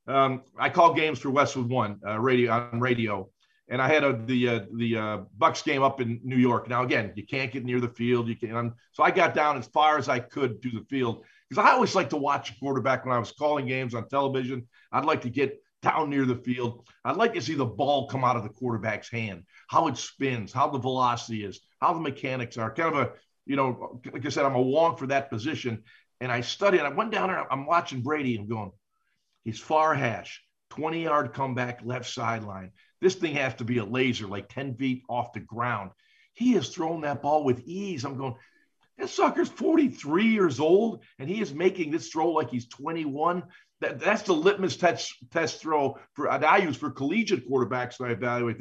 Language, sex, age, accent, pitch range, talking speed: English, male, 50-69, American, 120-160 Hz, 220 wpm